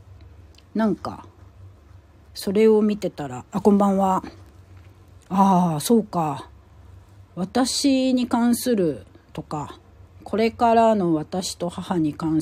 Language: Japanese